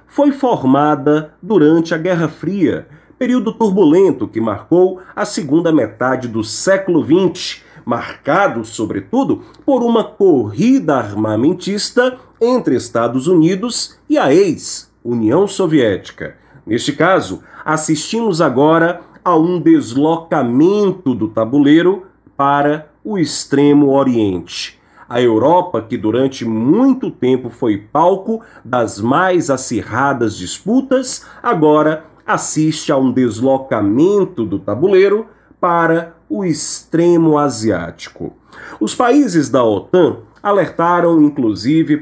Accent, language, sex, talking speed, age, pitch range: Brazilian, Portuguese, male, 100 wpm, 40-59, 135-210 Hz